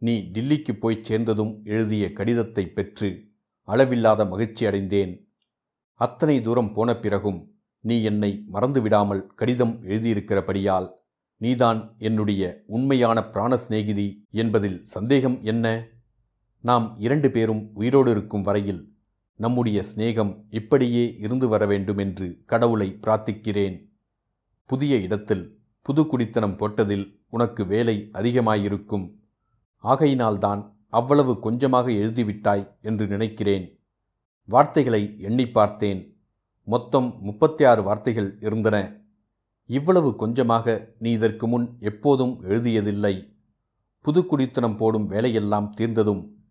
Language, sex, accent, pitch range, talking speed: Tamil, male, native, 105-120 Hz, 95 wpm